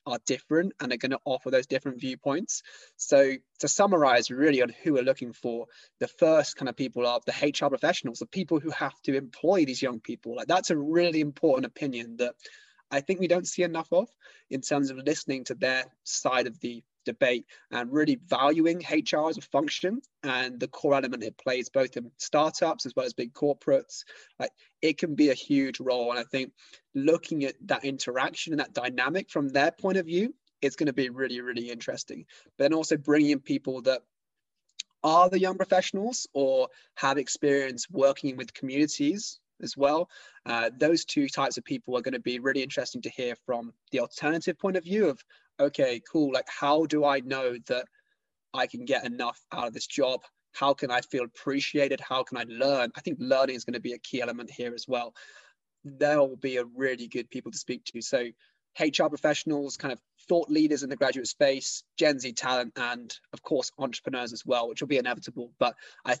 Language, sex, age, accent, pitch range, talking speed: English, male, 20-39, British, 130-160 Hz, 205 wpm